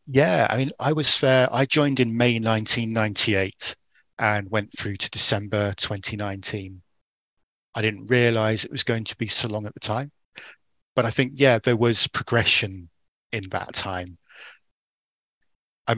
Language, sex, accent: English, male, British